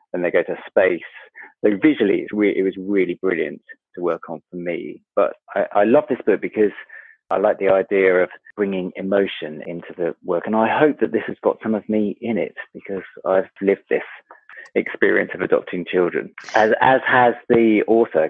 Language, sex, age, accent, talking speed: English, male, 30-49, British, 195 wpm